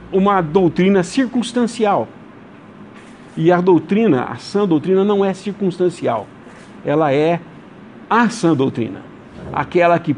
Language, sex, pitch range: English, male, 145-205 Hz